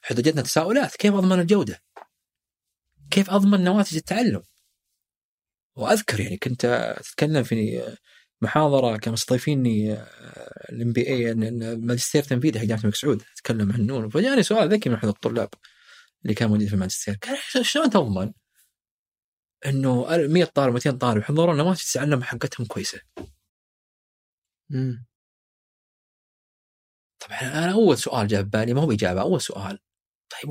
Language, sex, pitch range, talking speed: Arabic, male, 105-165 Hz, 130 wpm